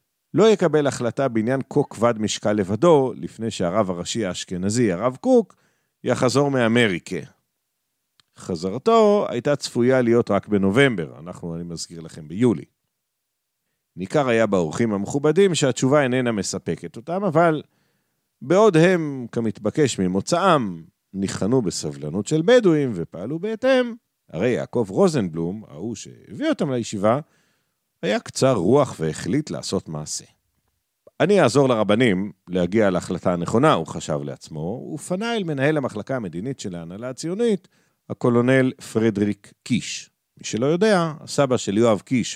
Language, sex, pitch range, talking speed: Hebrew, male, 95-155 Hz, 120 wpm